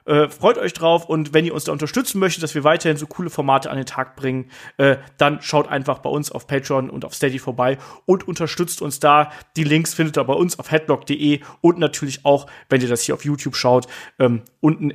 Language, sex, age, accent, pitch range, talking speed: German, male, 30-49, German, 140-175 Hz, 230 wpm